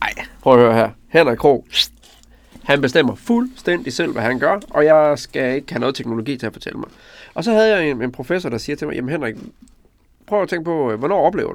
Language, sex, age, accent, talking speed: Danish, male, 30-49, native, 230 wpm